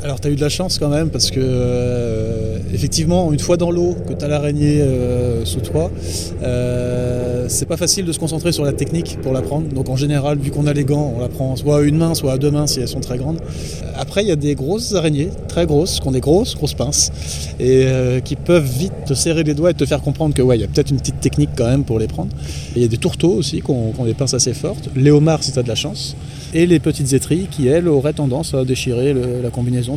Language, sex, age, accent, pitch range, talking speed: French, male, 20-39, French, 120-145 Hz, 265 wpm